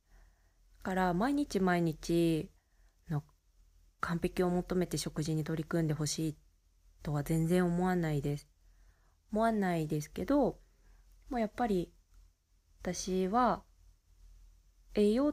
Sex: female